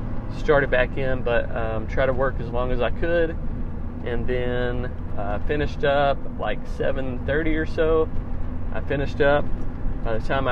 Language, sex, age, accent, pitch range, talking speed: English, male, 30-49, American, 110-140 Hz, 165 wpm